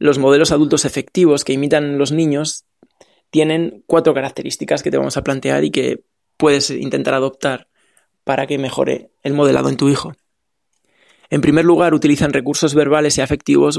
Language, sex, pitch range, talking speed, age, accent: Spanish, male, 135-155 Hz, 160 wpm, 20-39, Spanish